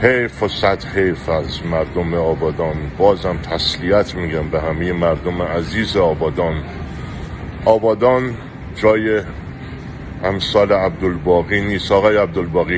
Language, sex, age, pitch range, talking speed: Persian, male, 50-69, 85-100 Hz, 105 wpm